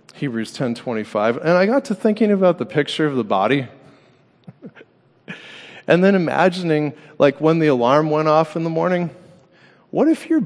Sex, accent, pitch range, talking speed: male, American, 135-195 Hz, 160 wpm